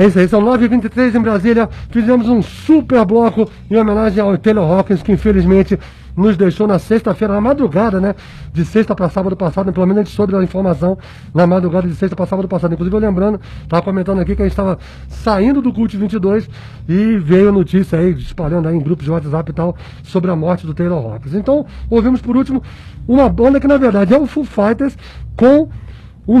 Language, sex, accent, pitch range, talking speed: English, male, Brazilian, 180-225 Hz, 210 wpm